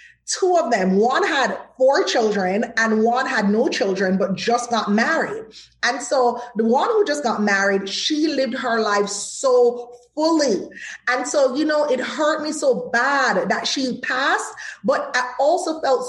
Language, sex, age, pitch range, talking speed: English, female, 20-39, 225-310 Hz, 170 wpm